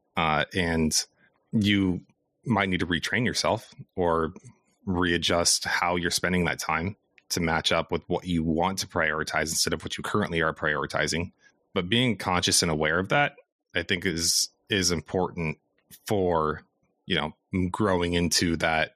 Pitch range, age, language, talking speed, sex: 80-110 Hz, 30-49, English, 155 wpm, male